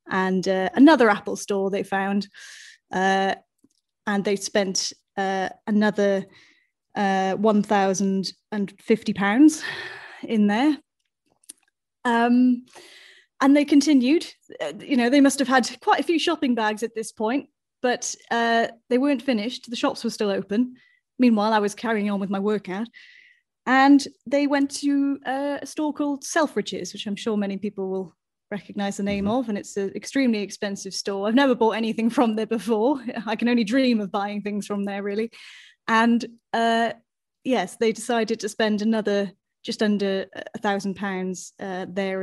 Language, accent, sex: English, British, female